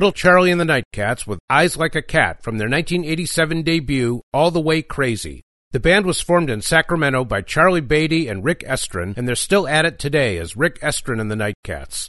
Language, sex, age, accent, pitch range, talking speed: English, male, 50-69, American, 115-165 Hz, 210 wpm